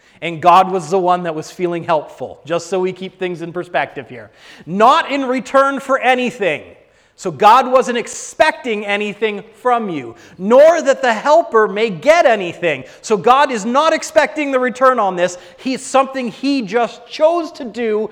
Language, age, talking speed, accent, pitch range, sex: English, 30-49, 170 wpm, American, 180-250 Hz, male